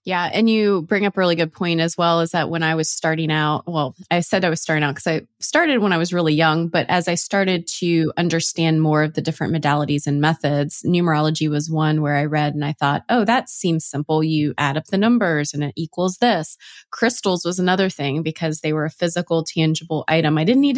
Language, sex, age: English, female, 20-39